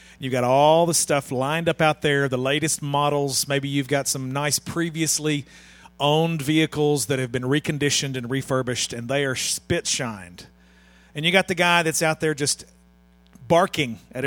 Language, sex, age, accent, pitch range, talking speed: English, male, 40-59, American, 145-210 Hz, 175 wpm